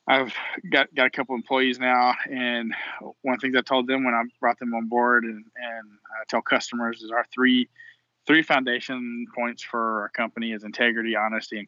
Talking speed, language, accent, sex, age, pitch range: 200 wpm, English, American, male, 20-39, 105-120 Hz